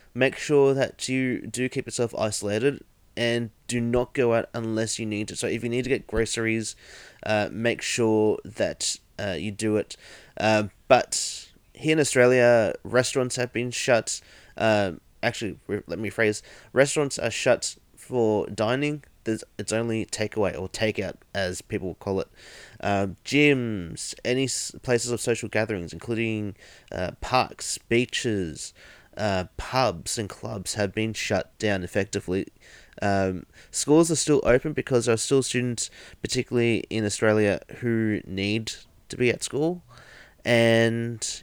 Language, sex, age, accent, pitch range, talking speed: English, male, 30-49, Australian, 105-125 Hz, 150 wpm